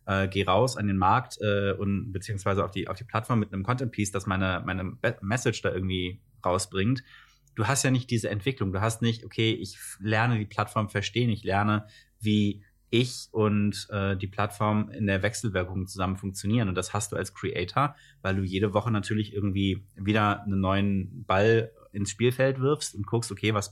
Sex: male